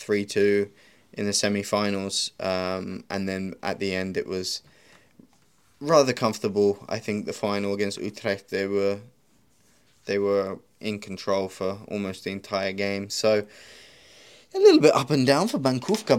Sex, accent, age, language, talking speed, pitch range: male, British, 20-39, English, 150 wpm, 100-115 Hz